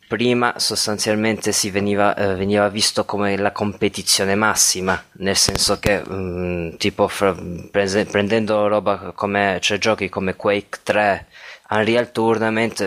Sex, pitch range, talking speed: male, 95-110 Hz, 130 wpm